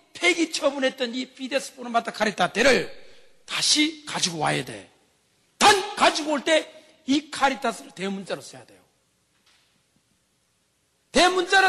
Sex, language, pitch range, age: male, Korean, 185-305 Hz, 40-59